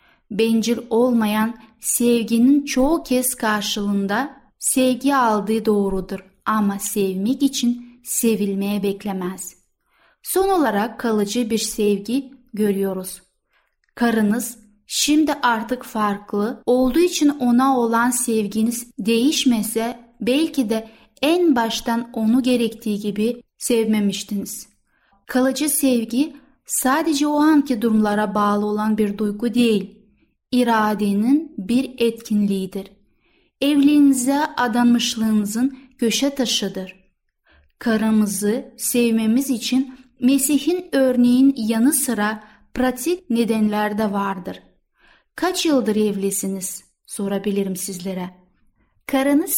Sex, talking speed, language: female, 90 wpm, Turkish